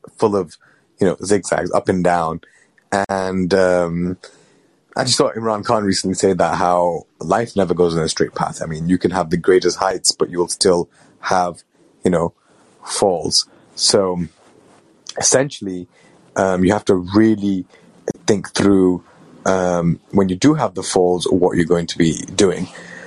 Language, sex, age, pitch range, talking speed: English, male, 30-49, 85-95 Hz, 170 wpm